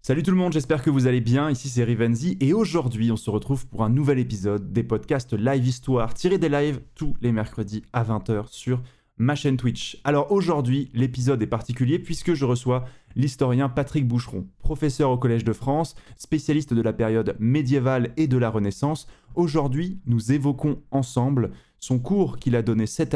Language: French